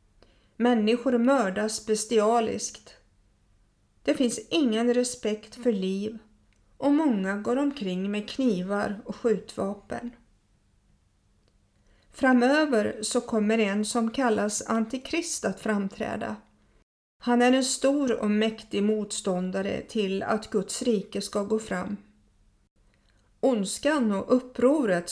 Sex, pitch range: female, 185-245 Hz